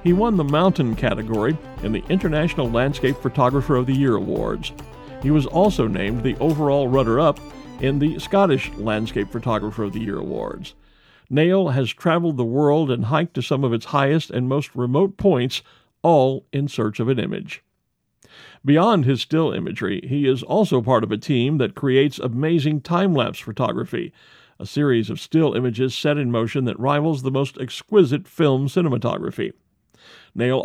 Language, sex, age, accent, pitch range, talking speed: English, male, 50-69, American, 125-160 Hz, 165 wpm